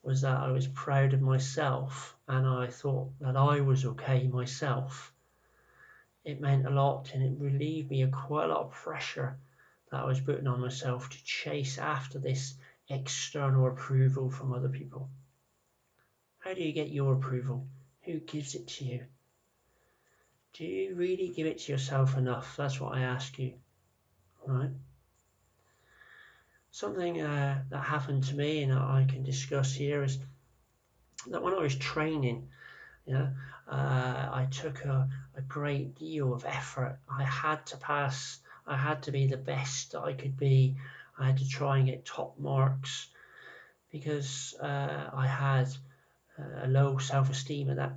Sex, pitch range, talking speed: male, 130-140 Hz, 160 wpm